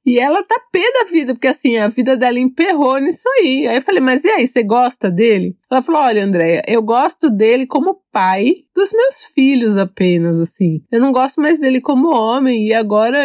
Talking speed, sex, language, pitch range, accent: 210 wpm, female, Portuguese, 210-295 Hz, Brazilian